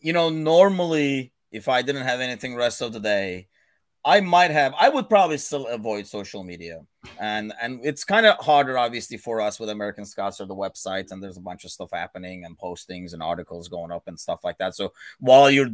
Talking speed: 215 wpm